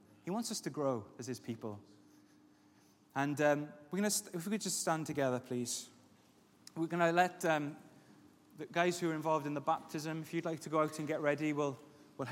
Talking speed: 215 wpm